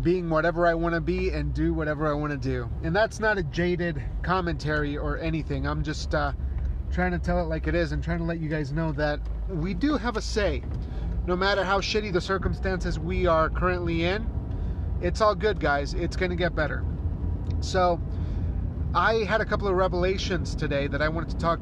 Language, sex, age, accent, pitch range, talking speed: English, male, 30-49, American, 115-185 Hz, 205 wpm